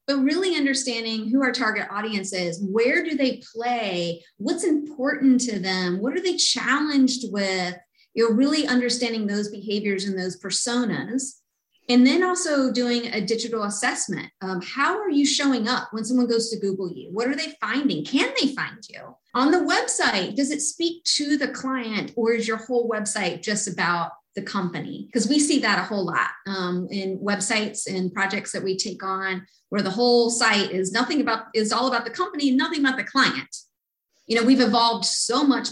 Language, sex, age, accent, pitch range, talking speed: English, female, 30-49, American, 190-255 Hz, 190 wpm